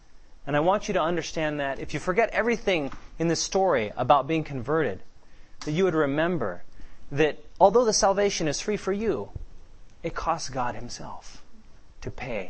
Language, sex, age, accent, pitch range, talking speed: English, male, 30-49, American, 105-155 Hz, 170 wpm